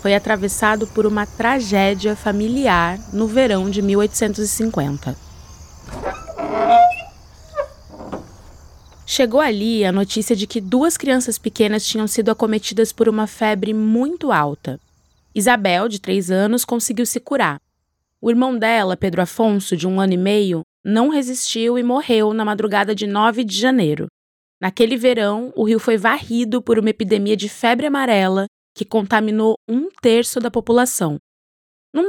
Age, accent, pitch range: 20-39, Brazilian, 200-240 Hz